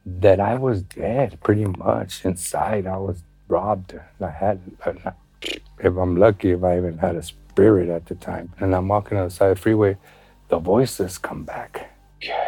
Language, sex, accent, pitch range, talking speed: English, male, American, 95-110 Hz, 180 wpm